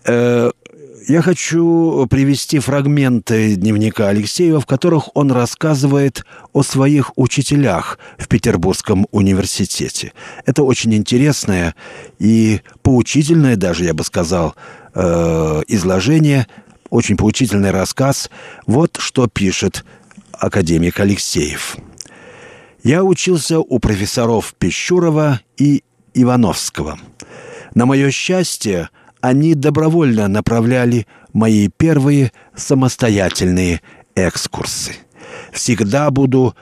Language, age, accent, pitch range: Russian, 50-69, native, 105-140 Hz